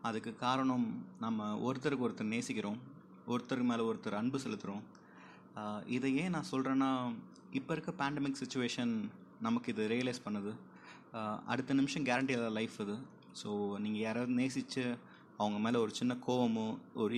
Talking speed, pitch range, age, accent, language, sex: 135 wpm, 110-135 Hz, 20-39, native, Tamil, male